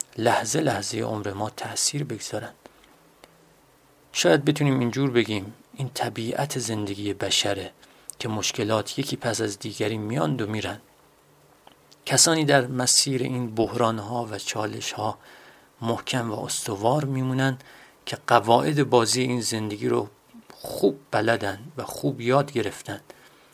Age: 40-59